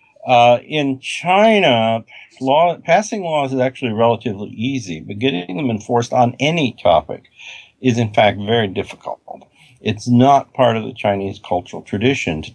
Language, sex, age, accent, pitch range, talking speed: English, male, 50-69, American, 105-130 Hz, 145 wpm